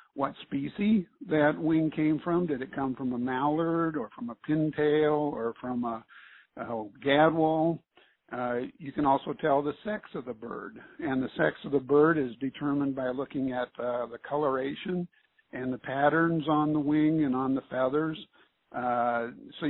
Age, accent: 60-79, American